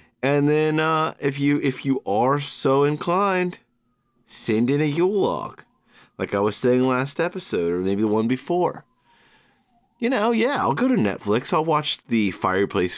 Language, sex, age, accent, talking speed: English, male, 30-49, American, 170 wpm